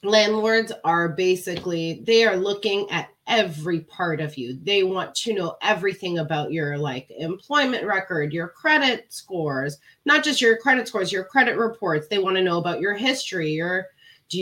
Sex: female